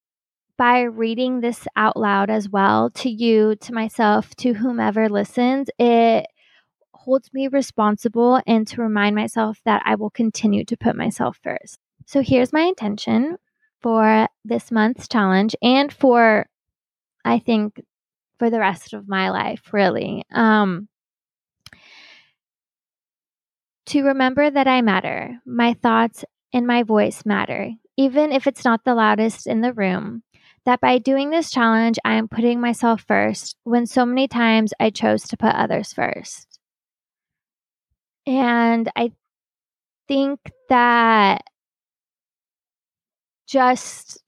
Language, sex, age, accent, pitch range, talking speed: English, female, 20-39, American, 215-250 Hz, 130 wpm